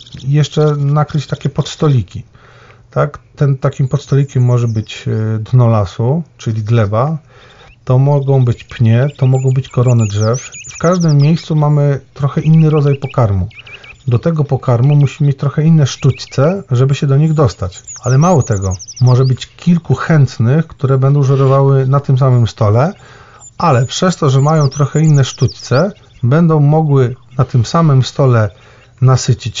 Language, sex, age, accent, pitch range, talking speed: Polish, male, 40-59, native, 120-150 Hz, 150 wpm